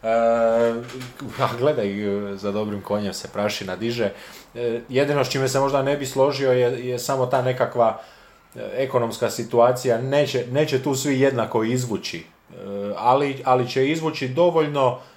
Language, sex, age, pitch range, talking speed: Croatian, male, 30-49, 110-130 Hz, 140 wpm